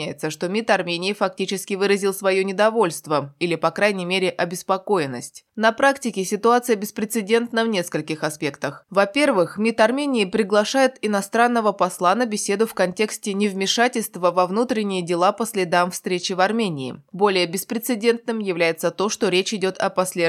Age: 20-39